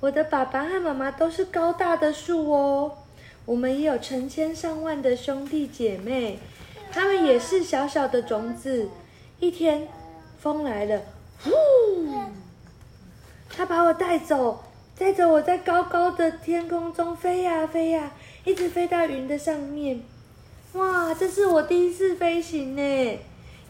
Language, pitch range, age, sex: Chinese, 245-330 Hz, 20-39, female